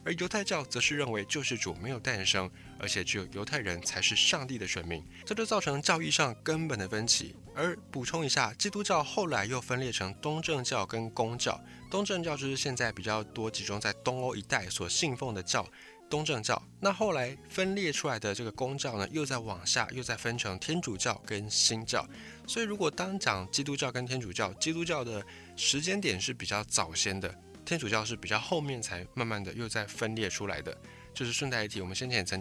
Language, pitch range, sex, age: Chinese, 100-145 Hz, male, 20-39